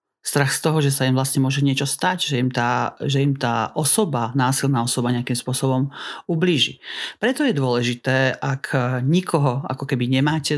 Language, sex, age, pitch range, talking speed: Slovak, male, 40-59, 130-155 Hz, 170 wpm